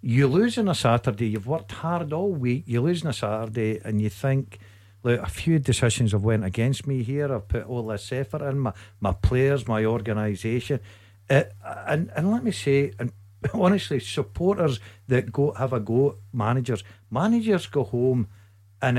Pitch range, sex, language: 105-150 Hz, male, English